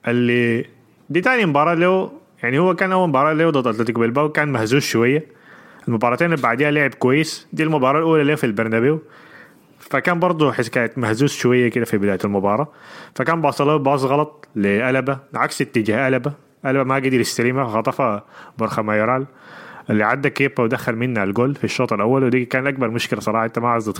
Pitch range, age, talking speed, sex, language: 115-145 Hz, 20-39, 175 wpm, male, Arabic